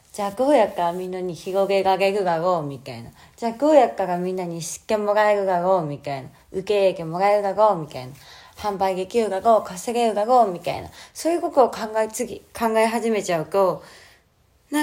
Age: 20-39